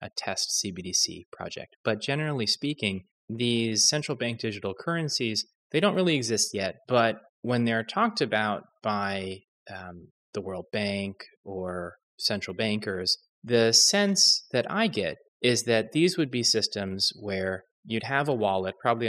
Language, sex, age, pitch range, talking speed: English, male, 20-39, 100-120 Hz, 150 wpm